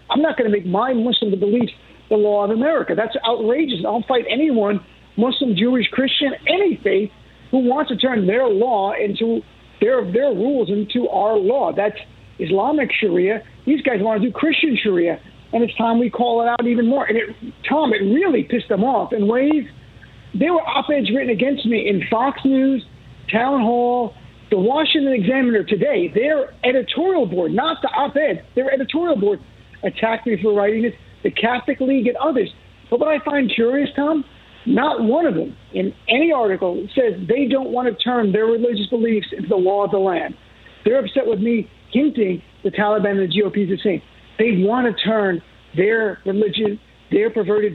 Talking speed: 185 wpm